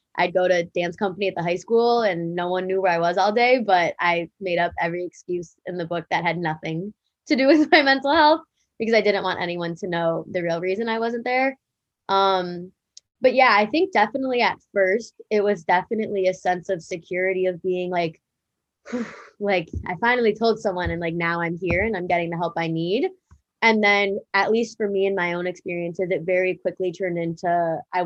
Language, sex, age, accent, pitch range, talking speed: English, female, 20-39, American, 170-200 Hz, 215 wpm